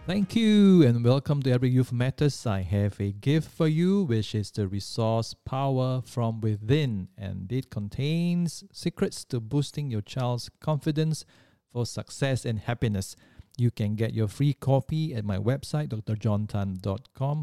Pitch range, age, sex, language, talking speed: 100-140 Hz, 50-69, male, English, 150 wpm